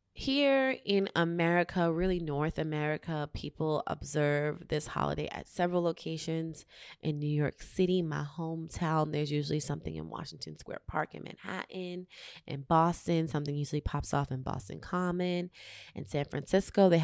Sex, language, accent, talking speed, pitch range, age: female, English, American, 145 wpm, 150-185 Hz, 20-39